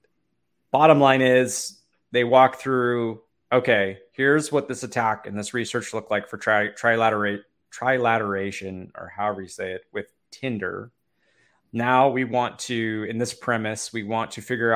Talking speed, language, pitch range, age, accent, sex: 155 wpm, English, 105-125 Hz, 20-39, American, male